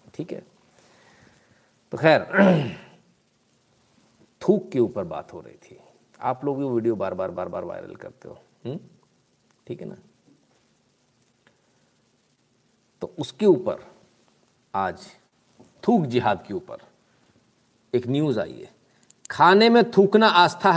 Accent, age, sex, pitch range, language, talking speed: native, 50-69, male, 130-180 Hz, Hindi, 120 wpm